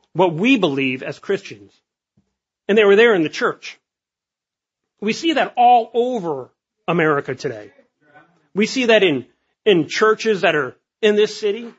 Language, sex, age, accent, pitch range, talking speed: English, male, 40-59, American, 175-240 Hz, 155 wpm